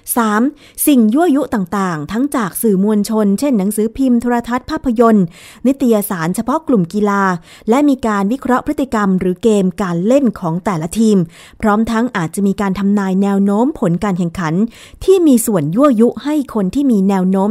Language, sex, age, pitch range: Thai, female, 20-39, 190-245 Hz